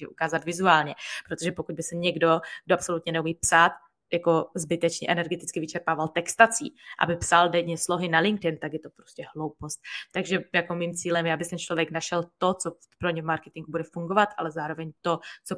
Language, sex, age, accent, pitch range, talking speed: Czech, female, 20-39, native, 155-170 Hz, 185 wpm